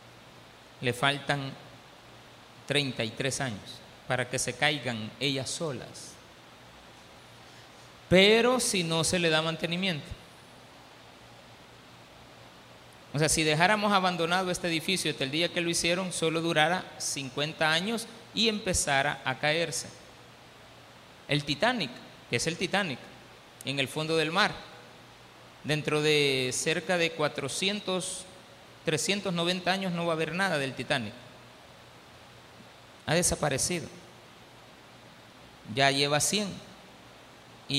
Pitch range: 140-195 Hz